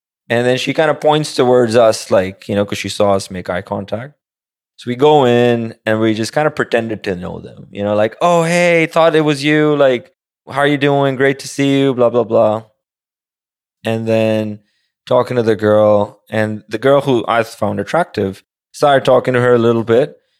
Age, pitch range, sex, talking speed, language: 20-39, 110-150 Hz, male, 210 wpm, English